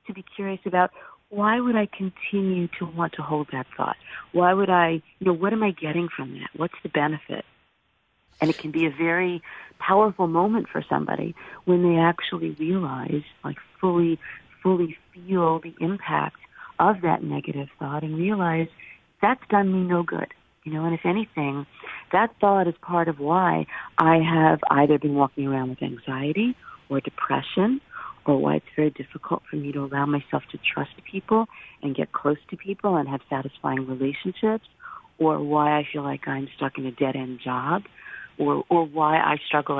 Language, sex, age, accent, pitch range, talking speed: English, female, 50-69, American, 150-190 Hz, 180 wpm